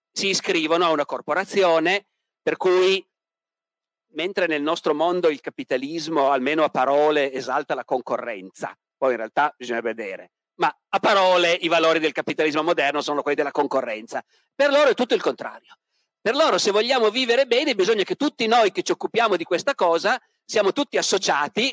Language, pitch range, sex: Italian, 150-230 Hz, male